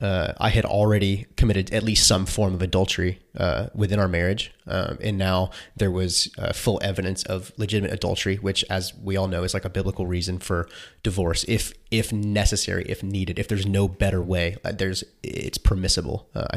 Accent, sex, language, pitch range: American, male, English, 95-110 Hz